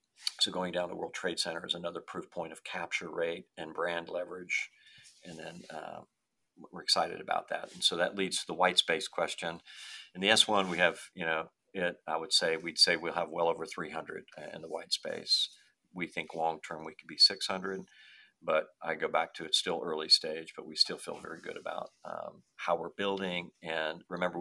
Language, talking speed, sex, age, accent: English, 210 wpm, male, 50-69, American